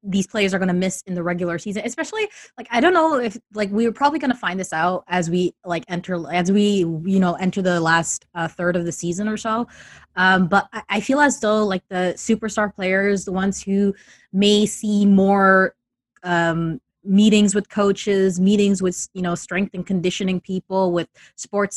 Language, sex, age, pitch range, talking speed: English, female, 20-39, 180-215 Hz, 205 wpm